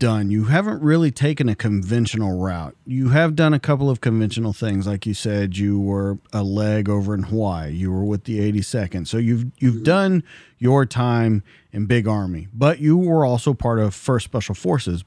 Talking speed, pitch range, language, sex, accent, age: 195 wpm, 105-145 Hz, English, male, American, 40-59